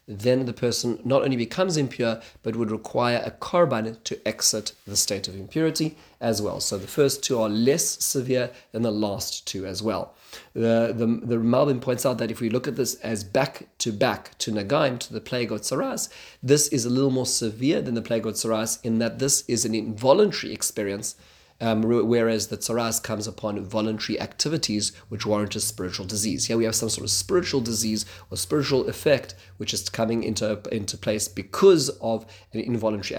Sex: male